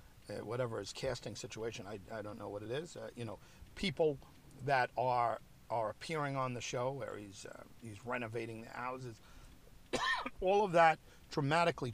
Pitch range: 105-135 Hz